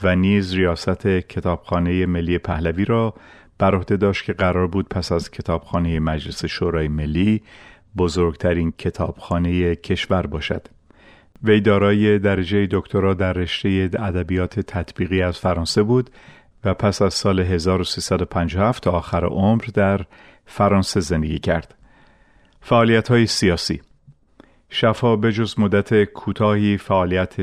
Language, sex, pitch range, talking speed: Persian, male, 90-100 Hz, 115 wpm